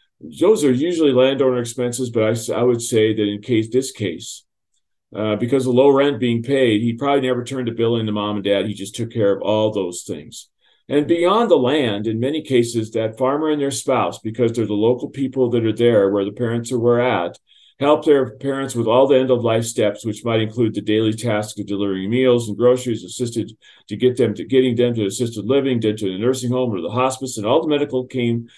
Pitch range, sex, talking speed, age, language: 110-130 Hz, male, 230 wpm, 50-69, English